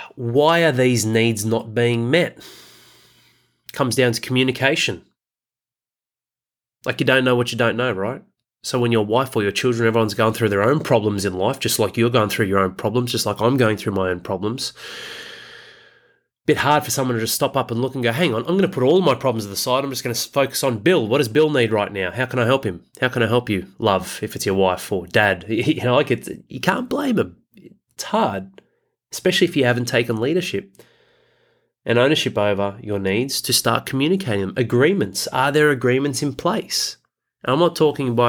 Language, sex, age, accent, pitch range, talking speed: English, male, 30-49, Australian, 110-135 Hz, 215 wpm